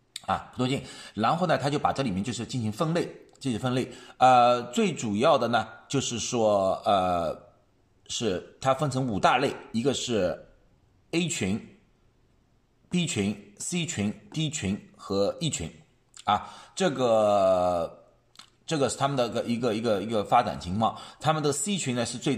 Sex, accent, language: male, native, Chinese